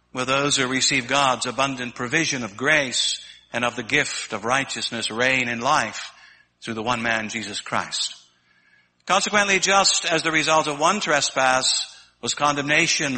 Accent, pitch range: American, 115-165 Hz